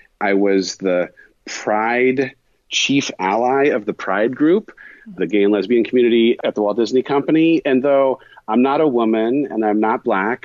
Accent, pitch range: American, 95-125 Hz